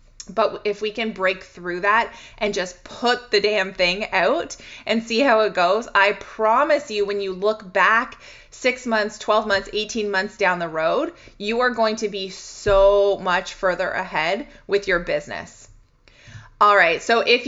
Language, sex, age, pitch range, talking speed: English, female, 20-39, 195-225 Hz, 175 wpm